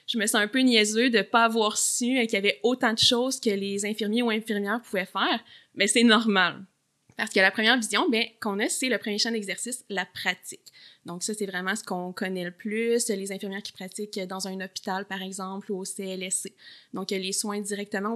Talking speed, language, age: 220 wpm, French, 20-39